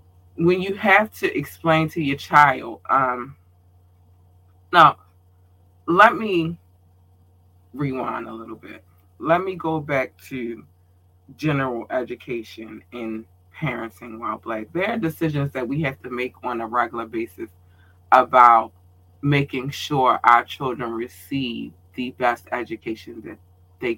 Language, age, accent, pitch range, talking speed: English, 20-39, American, 90-135 Hz, 125 wpm